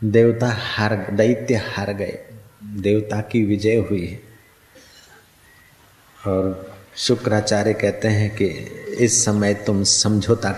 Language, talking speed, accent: Hindi, 110 wpm, native